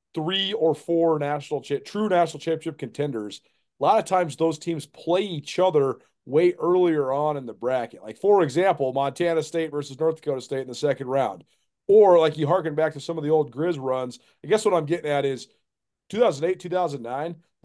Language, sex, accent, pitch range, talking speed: English, male, American, 150-185 Hz, 195 wpm